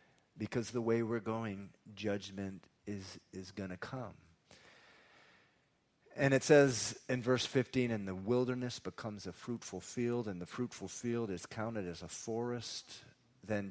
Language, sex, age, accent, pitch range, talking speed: English, male, 40-59, American, 90-120 Hz, 150 wpm